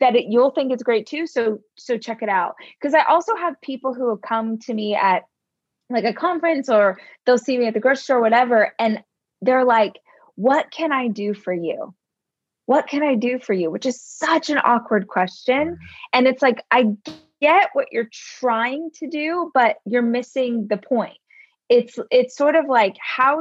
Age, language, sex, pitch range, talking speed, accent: 20-39, English, female, 210-265 Hz, 195 wpm, American